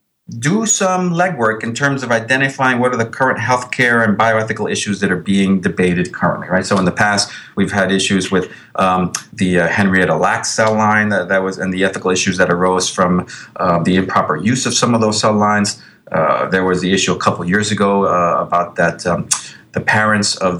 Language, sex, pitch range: English, male, 95-125 Hz